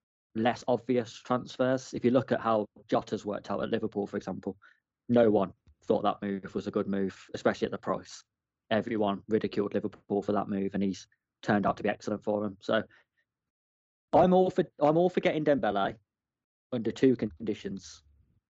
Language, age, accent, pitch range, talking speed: English, 20-39, British, 100-115 Hz, 180 wpm